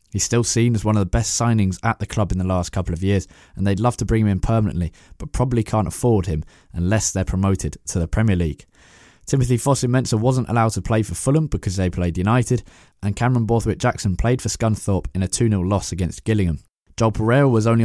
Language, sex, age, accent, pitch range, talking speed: English, male, 20-39, British, 95-115 Hz, 225 wpm